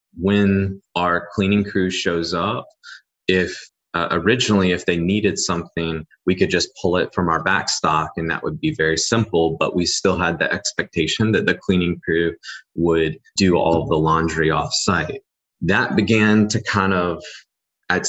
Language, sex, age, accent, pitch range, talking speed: English, male, 20-39, American, 80-95 Hz, 170 wpm